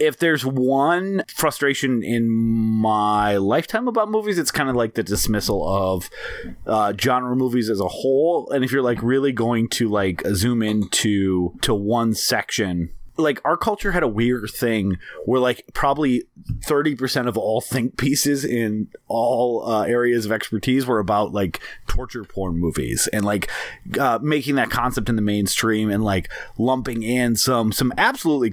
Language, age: English, 30-49